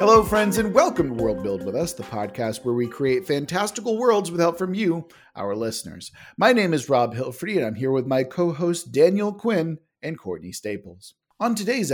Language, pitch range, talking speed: English, 120-175 Hz, 200 wpm